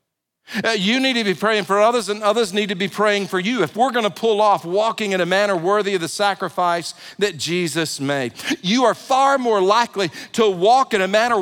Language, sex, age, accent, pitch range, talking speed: English, male, 50-69, American, 190-230 Hz, 225 wpm